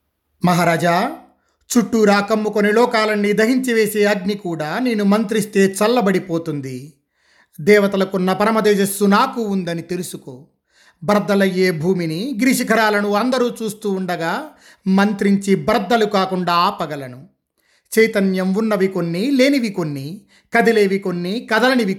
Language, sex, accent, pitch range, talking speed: Telugu, male, native, 180-220 Hz, 95 wpm